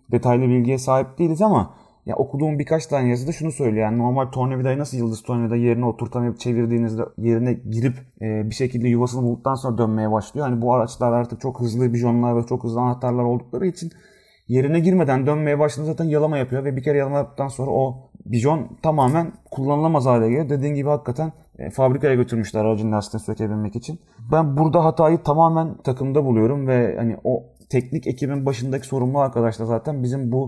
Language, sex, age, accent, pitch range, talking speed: Turkish, male, 30-49, native, 115-140 Hz, 175 wpm